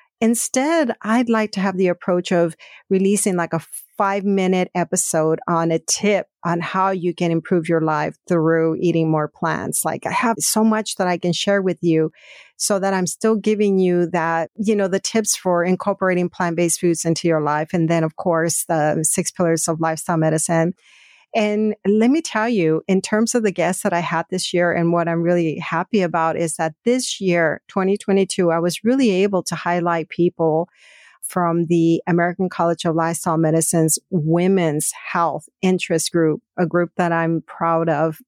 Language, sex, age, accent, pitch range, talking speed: English, female, 50-69, American, 165-195 Hz, 180 wpm